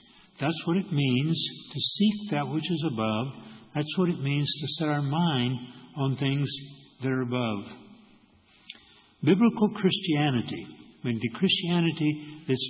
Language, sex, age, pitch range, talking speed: English, male, 60-79, 115-150 Hz, 140 wpm